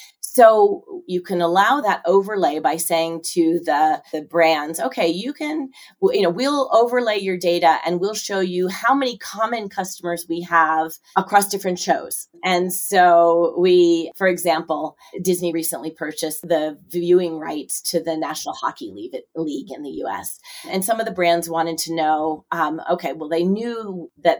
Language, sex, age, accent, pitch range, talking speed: English, female, 30-49, American, 160-195 Hz, 165 wpm